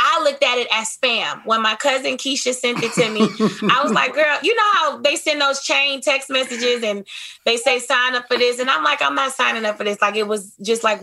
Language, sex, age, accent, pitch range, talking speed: English, female, 20-39, American, 230-290 Hz, 260 wpm